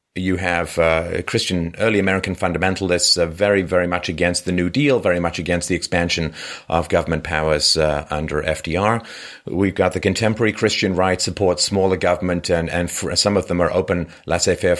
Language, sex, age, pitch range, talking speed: English, male, 30-49, 85-110 Hz, 180 wpm